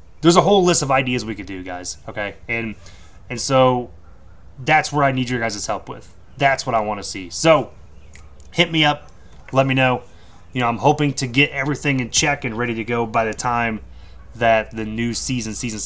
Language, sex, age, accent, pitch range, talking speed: English, male, 20-39, American, 110-145 Hz, 210 wpm